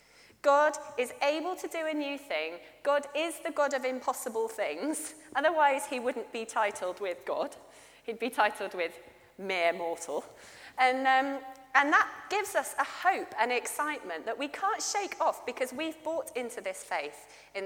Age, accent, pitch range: 30-49, British, 225-305 Hz